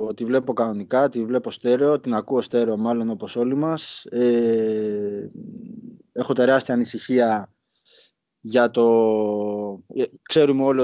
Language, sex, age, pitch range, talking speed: Greek, male, 20-39, 115-145 Hz, 115 wpm